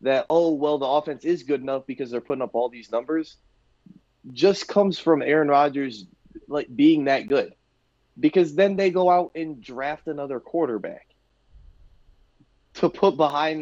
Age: 20-39